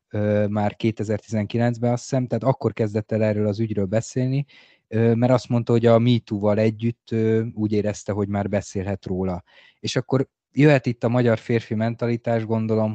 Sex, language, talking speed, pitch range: male, Hungarian, 170 wpm, 105-115 Hz